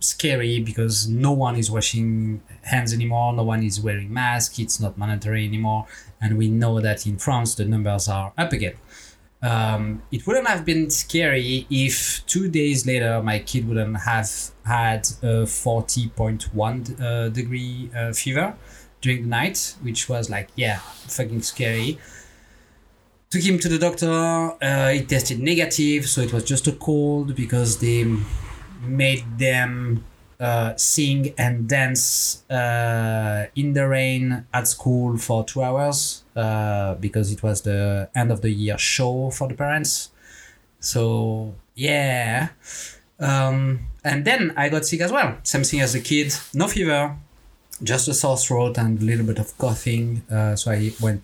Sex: male